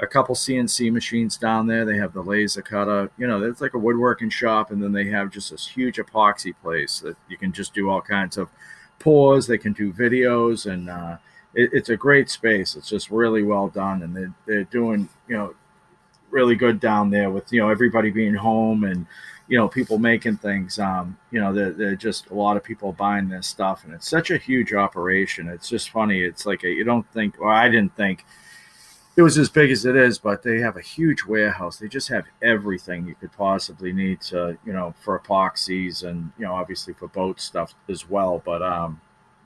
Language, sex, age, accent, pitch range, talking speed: English, male, 40-59, American, 95-115 Hz, 215 wpm